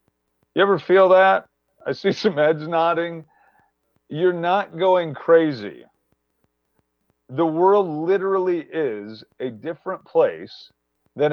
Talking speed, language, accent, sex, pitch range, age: 110 wpm, English, American, male, 135-195 Hz, 40-59